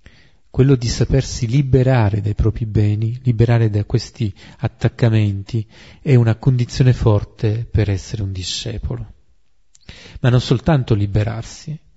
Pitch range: 105-140 Hz